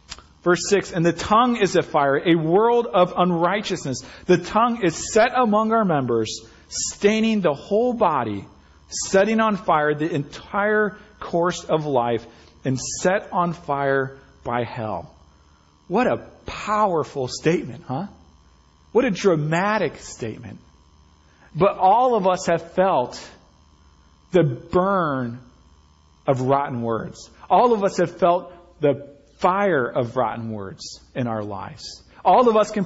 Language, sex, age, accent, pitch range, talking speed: English, male, 40-59, American, 130-185 Hz, 135 wpm